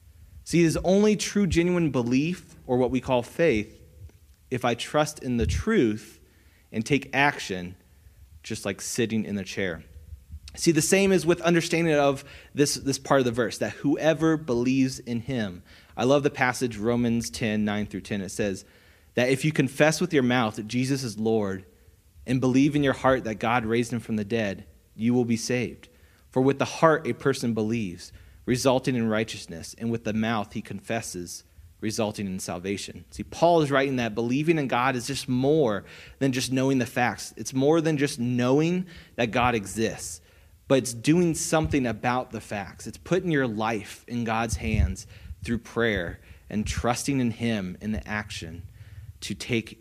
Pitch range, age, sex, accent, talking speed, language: 100-130 Hz, 30-49, male, American, 180 wpm, English